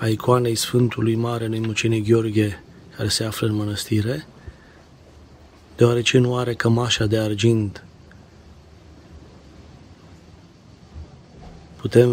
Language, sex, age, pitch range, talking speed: Romanian, male, 30-49, 90-130 Hz, 90 wpm